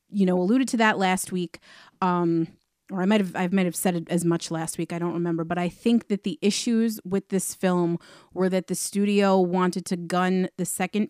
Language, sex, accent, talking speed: English, female, American, 220 wpm